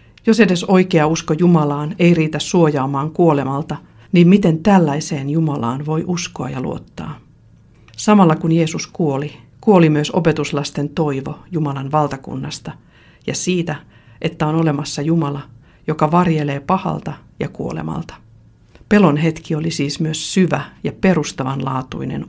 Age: 50-69